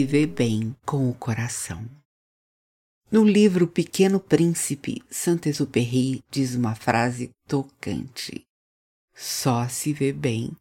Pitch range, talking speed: 130-175 Hz, 105 wpm